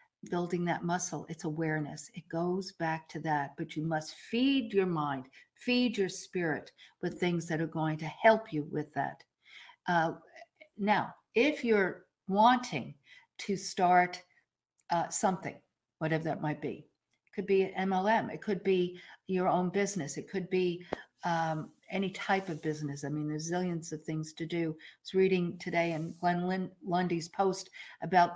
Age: 50-69